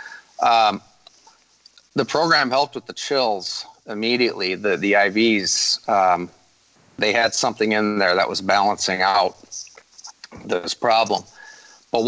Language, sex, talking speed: English, male, 120 wpm